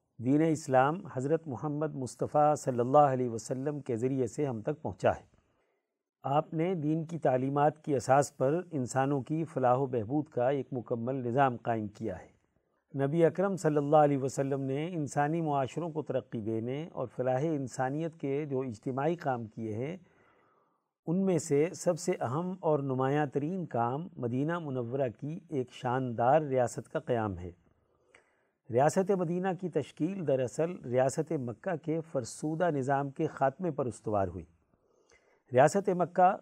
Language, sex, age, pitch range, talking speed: Urdu, male, 50-69, 130-160 Hz, 155 wpm